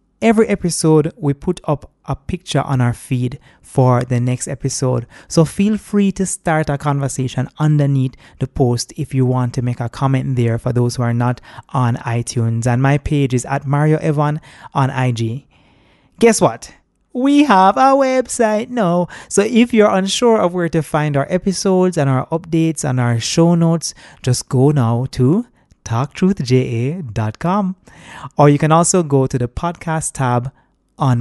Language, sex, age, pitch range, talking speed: English, male, 20-39, 125-175 Hz, 165 wpm